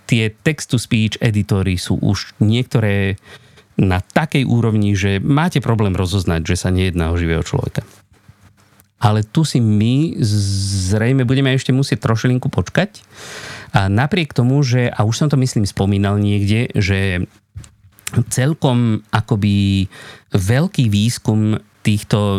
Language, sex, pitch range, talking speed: Slovak, male, 100-130 Hz, 125 wpm